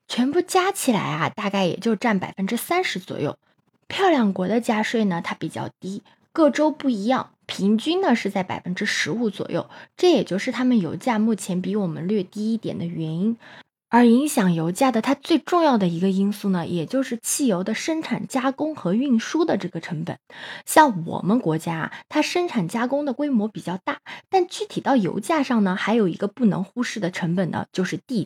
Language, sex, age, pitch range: Chinese, female, 20-39, 190-275 Hz